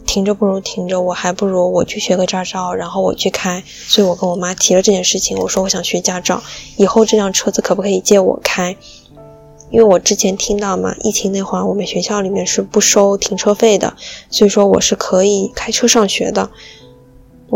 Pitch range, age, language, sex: 185-210 Hz, 10-29, Chinese, female